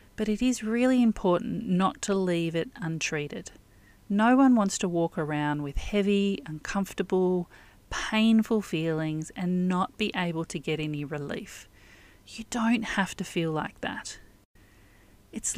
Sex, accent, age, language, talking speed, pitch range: female, Australian, 40-59, English, 145 wpm, 155-210 Hz